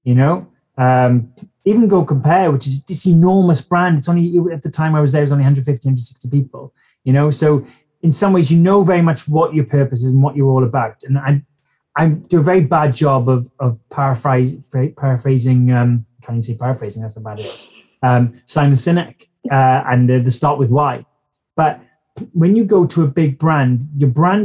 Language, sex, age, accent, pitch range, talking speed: English, male, 20-39, British, 130-170 Hz, 210 wpm